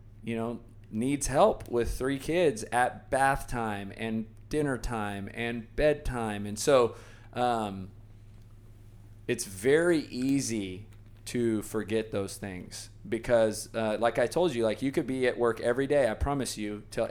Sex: male